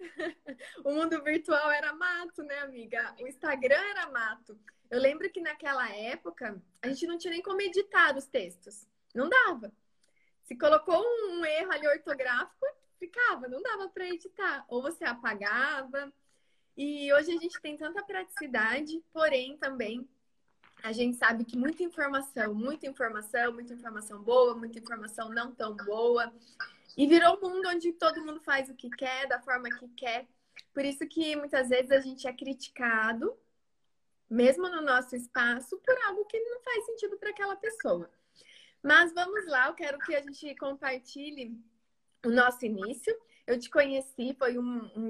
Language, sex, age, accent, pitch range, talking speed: Portuguese, female, 20-39, Brazilian, 235-315 Hz, 160 wpm